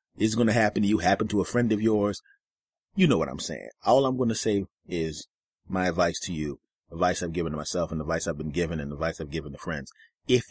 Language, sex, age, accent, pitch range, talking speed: English, male, 30-49, American, 90-120 Hz, 250 wpm